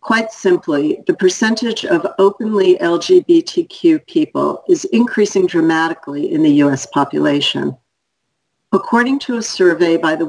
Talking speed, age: 120 wpm, 50-69